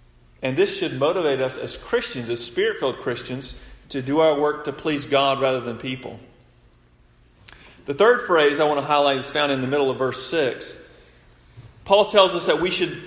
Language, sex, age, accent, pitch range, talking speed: English, male, 40-59, American, 130-190 Hz, 190 wpm